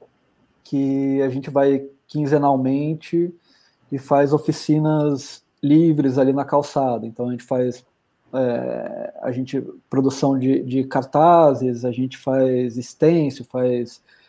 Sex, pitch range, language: male, 130-155 Hz, Portuguese